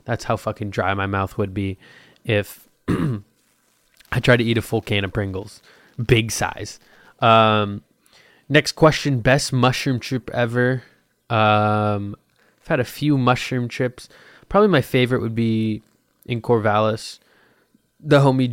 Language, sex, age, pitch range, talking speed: English, male, 20-39, 105-125 Hz, 140 wpm